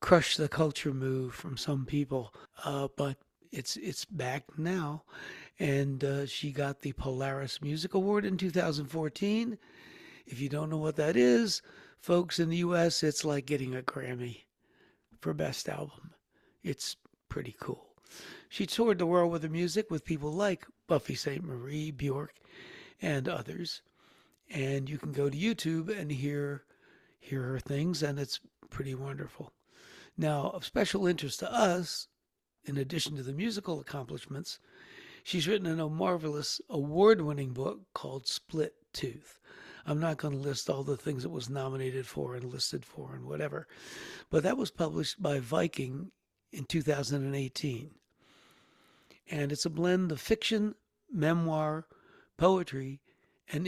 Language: English